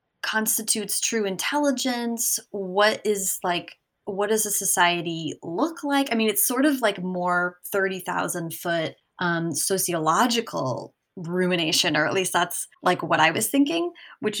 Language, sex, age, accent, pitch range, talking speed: English, female, 20-39, American, 175-220 Hz, 145 wpm